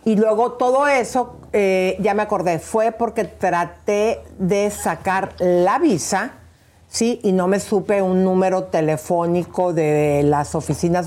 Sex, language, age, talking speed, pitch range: female, Spanish, 50-69, 140 wpm, 170-205 Hz